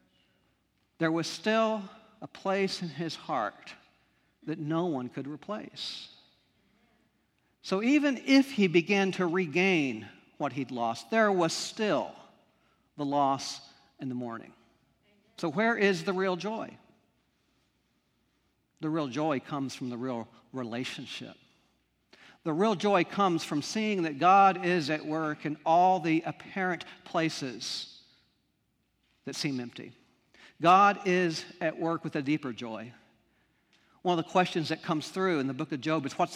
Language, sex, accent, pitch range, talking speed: English, male, American, 140-180 Hz, 140 wpm